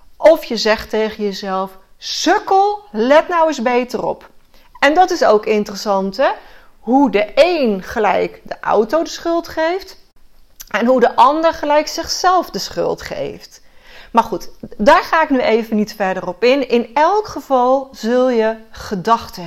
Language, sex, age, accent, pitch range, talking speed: Dutch, female, 40-59, Dutch, 210-295 Hz, 160 wpm